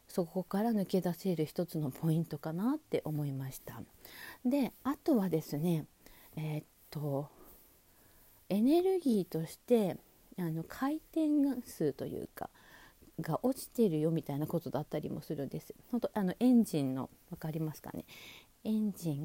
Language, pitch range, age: Japanese, 170-245 Hz, 40-59